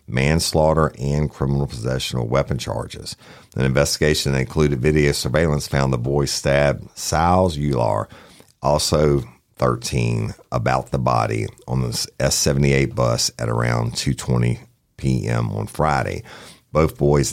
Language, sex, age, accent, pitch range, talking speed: English, male, 50-69, American, 65-80 Hz, 125 wpm